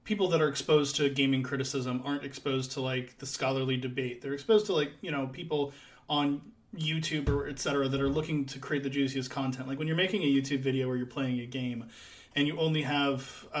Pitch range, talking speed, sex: 130-155 Hz, 225 wpm, male